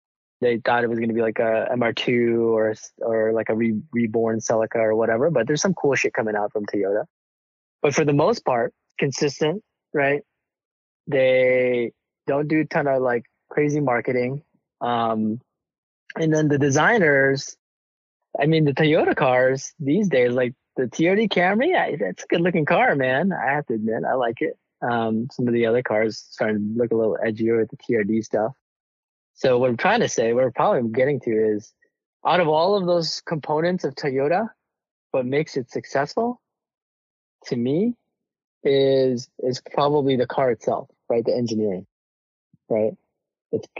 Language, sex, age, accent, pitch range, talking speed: English, male, 20-39, American, 115-150 Hz, 175 wpm